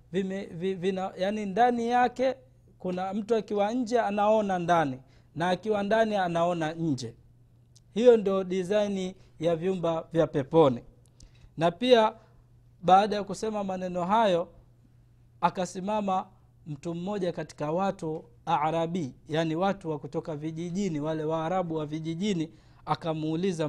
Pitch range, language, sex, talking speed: 150-200 Hz, Swahili, male, 115 wpm